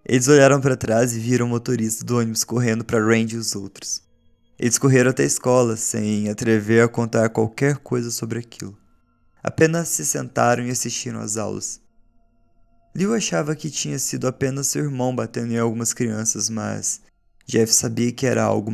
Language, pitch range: Portuguese, 110-125 Hz